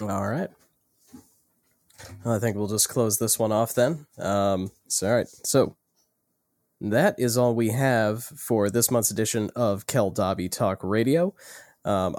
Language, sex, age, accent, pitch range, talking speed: English, male, 20-39, American, 95-120 Hz, 160 wpm